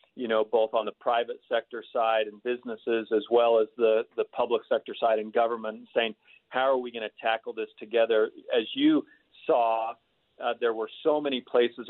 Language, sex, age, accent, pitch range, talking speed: English, male, 40-59, American, 115-190 Hz, 190 wpm